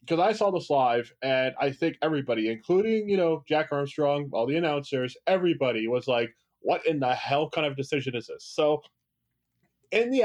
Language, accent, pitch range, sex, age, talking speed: English, American, 125-165 Hz, male, 20-39, 185 wpm